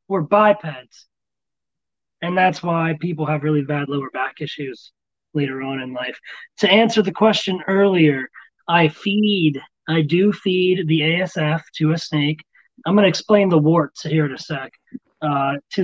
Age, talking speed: 30-49, 165 wpm